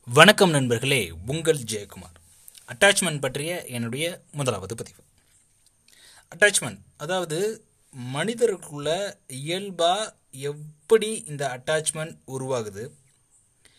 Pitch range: 130-185 Hz